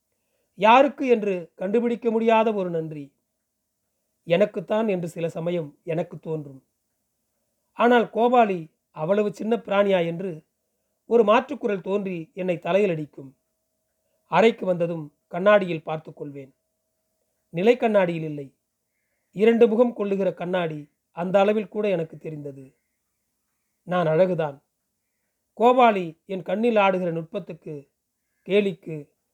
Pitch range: 165-215 Hz